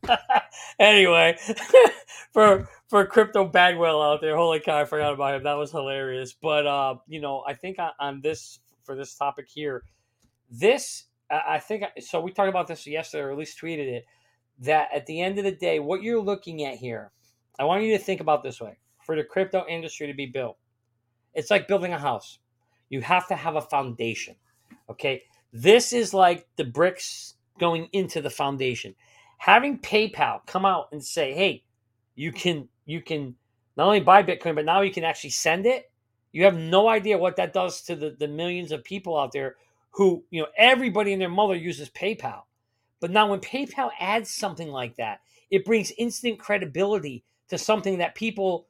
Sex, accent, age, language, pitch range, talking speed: male, American, 40-59, English, 140-195 Hz, 185 wpm